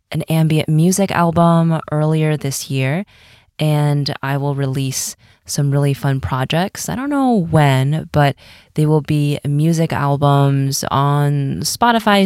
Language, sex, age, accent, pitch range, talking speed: English, female, 20-39, American, 140-180 Hz, 130 wpm